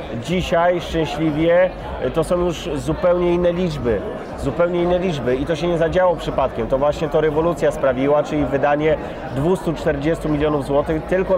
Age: 30-49